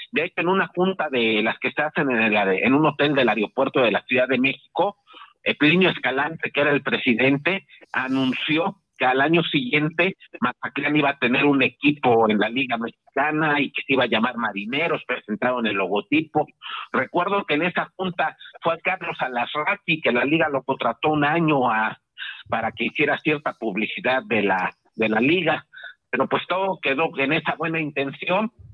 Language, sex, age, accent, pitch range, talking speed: Spanish, male, 50-69, Mexican, 125-165 Hz, 185 wpm